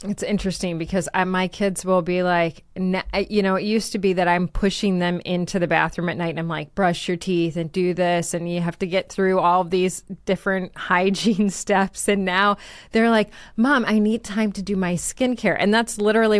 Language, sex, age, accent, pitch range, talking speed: English, female, 30-49, American, 175-220 Hz, 220 wpm